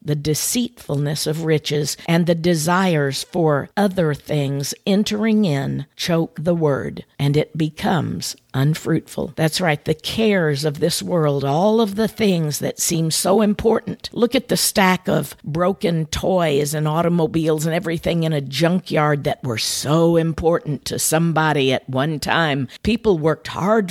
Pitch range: 150-185 Hz